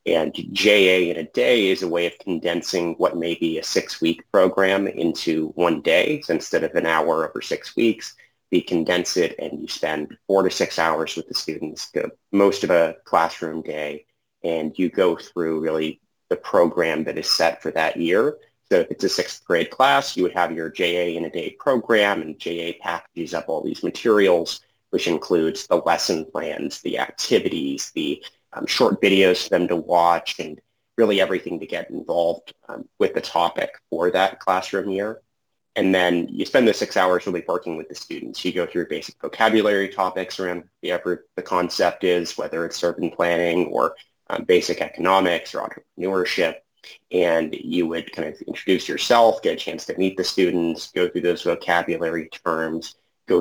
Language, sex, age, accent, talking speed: English, male, 30-49, American, 185 wpm